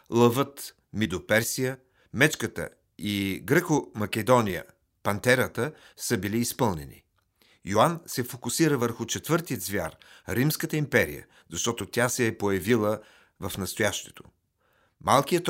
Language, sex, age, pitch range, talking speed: Bulgarian, male, 50-69, 100-130 Hz, 100 wpm